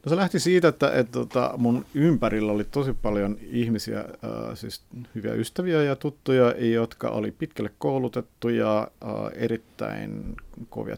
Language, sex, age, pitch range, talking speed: Finnish, male, 50-69, 110-135 Hz, 140 wpm